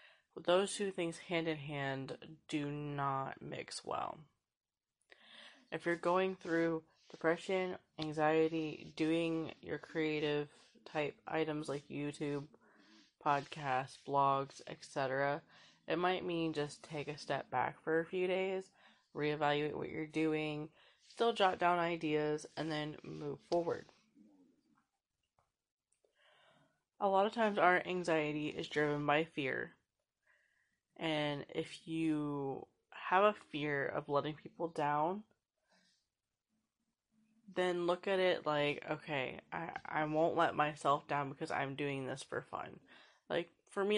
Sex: female